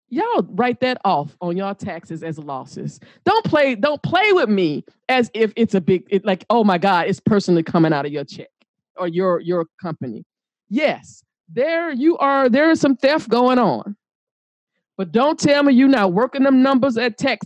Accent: American